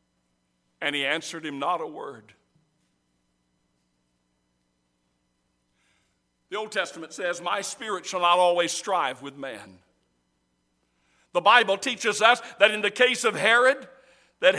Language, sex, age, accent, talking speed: English, male, 60-79, American, 125 wpm